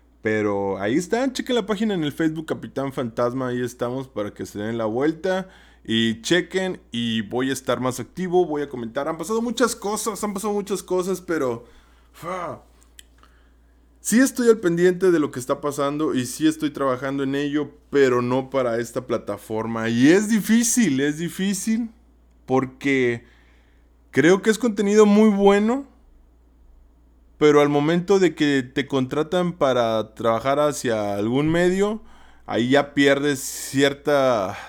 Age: 20-39